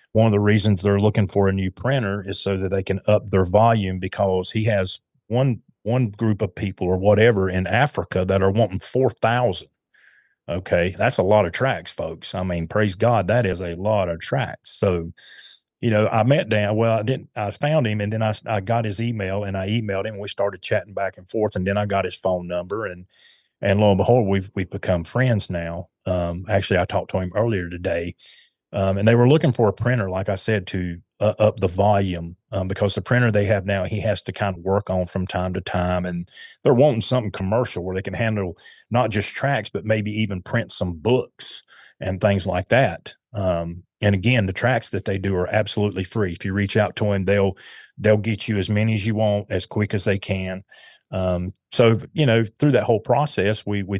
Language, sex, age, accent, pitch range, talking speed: English, male, 30-49, American, 95-110 Hz, 225 wpm